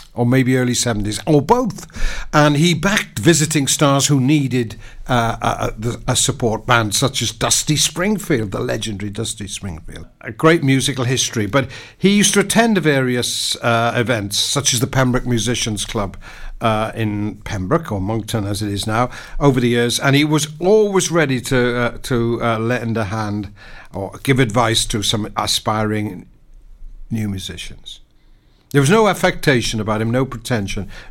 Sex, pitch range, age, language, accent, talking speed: male, 110-140 Hz, 60-79, English, British, 165 wpm